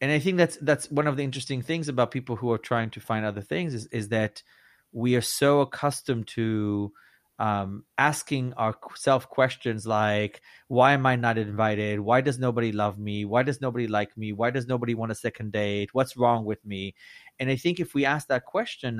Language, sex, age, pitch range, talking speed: English, male, 30-49, 105-130 Hz, 210 wpm